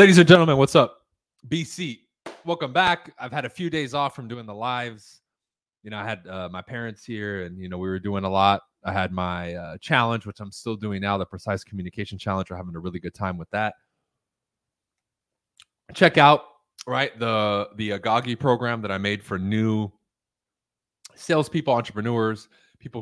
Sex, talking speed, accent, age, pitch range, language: male, 185 wpm, American, 20-39, 95-135 Hz, English